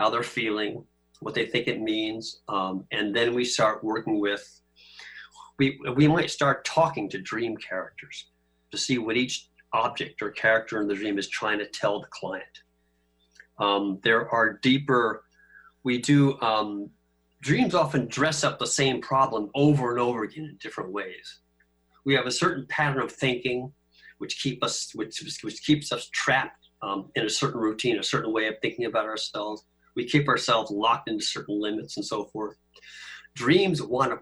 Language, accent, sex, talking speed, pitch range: English, American, male, 175 wpm, 100-125 Hz